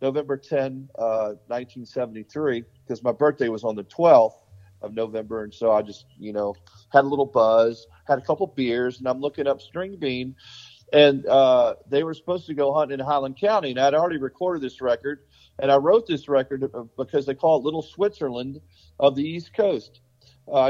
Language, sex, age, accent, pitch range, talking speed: English, male, 40-59, American, 115-140 Hz, 190 wpm